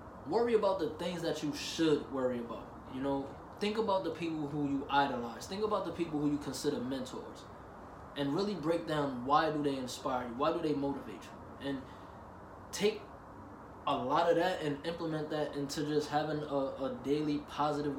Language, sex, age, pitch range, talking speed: English, male, 20-39, 135-160 Hz, 185 wpm